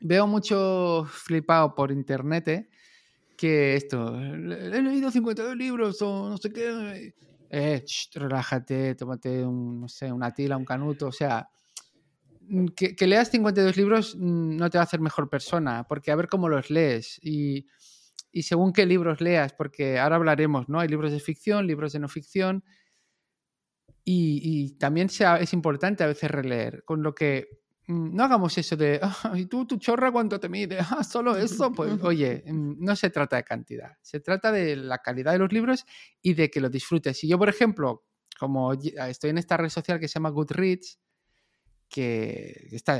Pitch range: 140-190 Hz